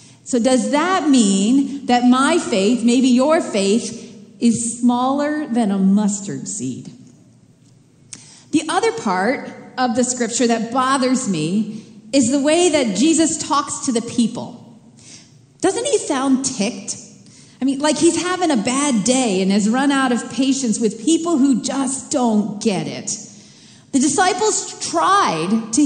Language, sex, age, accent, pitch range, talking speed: English, female, 40-59, American, 235-315 Hz, 145 wpm